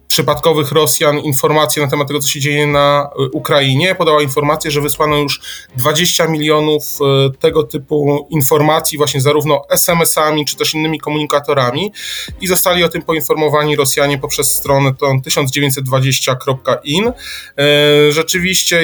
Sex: male